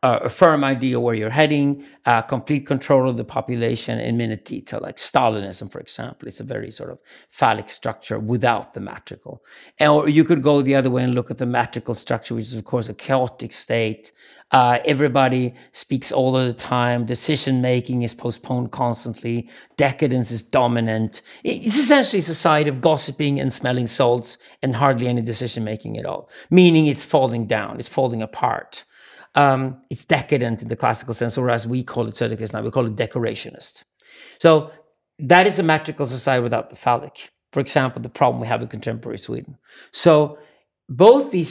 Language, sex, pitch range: English, male, 120-150 Hz